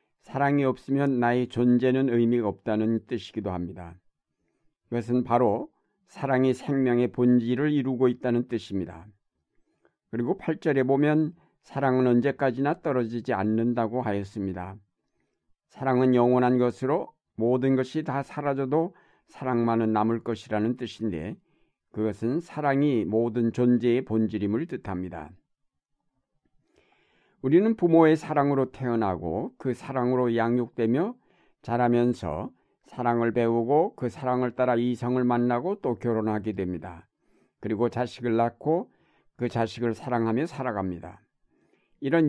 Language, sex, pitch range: Korean, male, 115-140 Hz